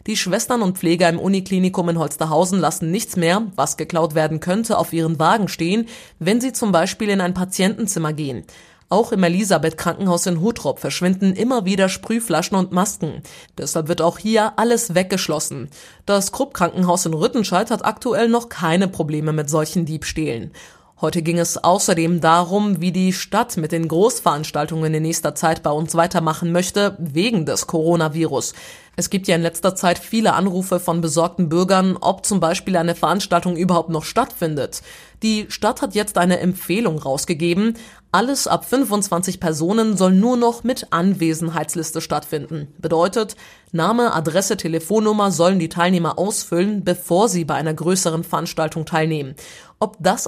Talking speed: 155 wpm